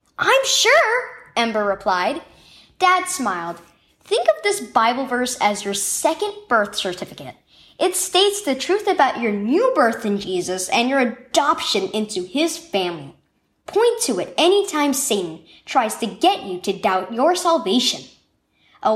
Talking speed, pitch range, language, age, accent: 145 wpm, 220-360 Hz, English, 10-29, American